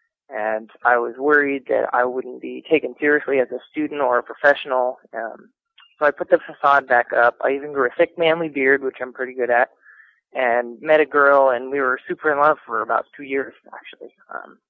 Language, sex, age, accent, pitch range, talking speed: English, male, 20-39, American, 125-150 Hz, 210 wpm